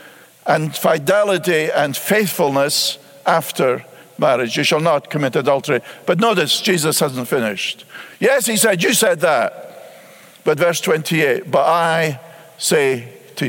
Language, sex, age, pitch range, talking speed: English, male, 50-69, 165-215 Hz, 130 wpm